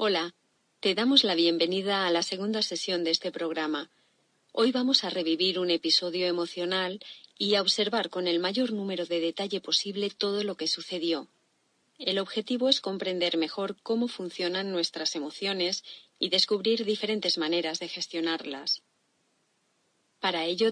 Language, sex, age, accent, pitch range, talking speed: Spanish, female, 30-49, Spanish, 170-205 Hz, 145 wpm